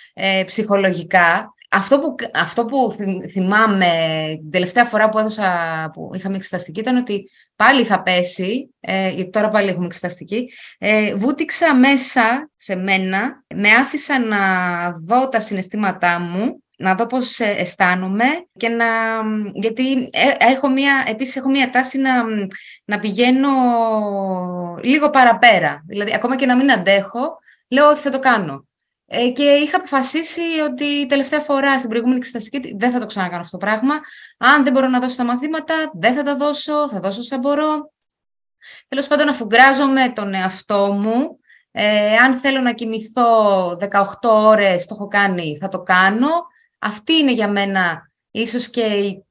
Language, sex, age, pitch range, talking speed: Greek, female, 20-39, 195-270 Hz, 150 wpm